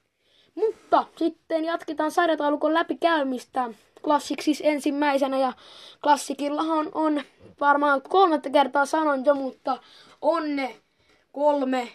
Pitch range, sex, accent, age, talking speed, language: 245-290 Hz, female, native, 20-39, 95 wpm, Finnish